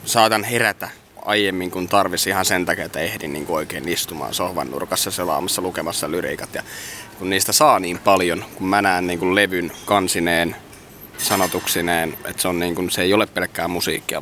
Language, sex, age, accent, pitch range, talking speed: Finnish, male, 20-39, native, 95-115 Hz, 175 wpm